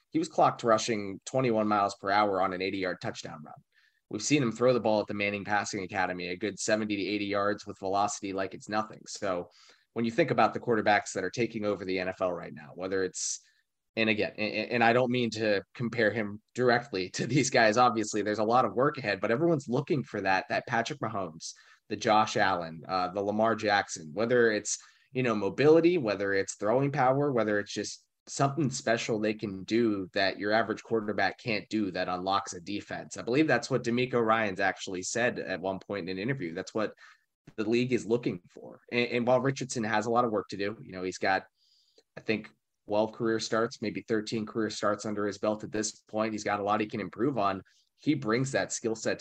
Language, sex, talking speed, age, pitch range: English, male, 220 wpm, 30-49, 100-115 Hz